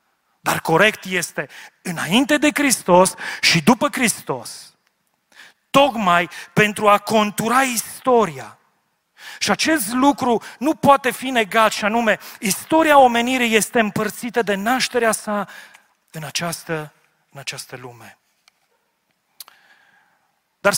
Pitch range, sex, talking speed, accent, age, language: 175-240 Hz, male, 100 wpm, native, 40-59, Romanian